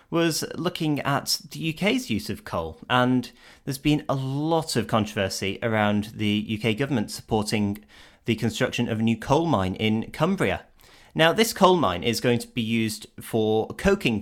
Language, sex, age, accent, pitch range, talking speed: English, male, 30-49, British, 105-140 Hz, 170 wpm